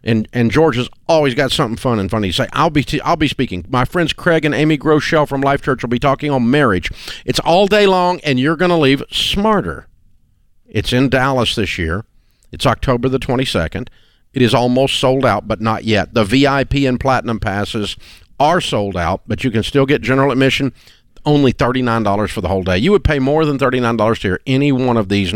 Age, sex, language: 50-69, male, English